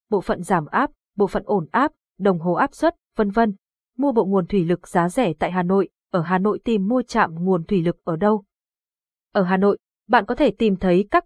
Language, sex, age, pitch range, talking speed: Vietnamese, female, 20-39, 180-235 Hz, 235 wpm